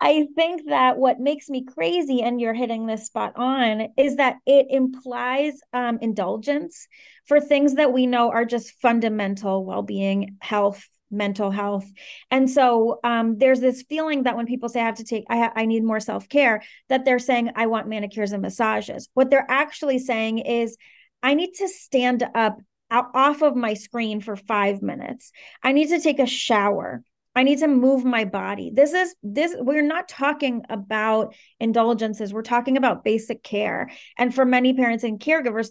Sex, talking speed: female, 180 wpm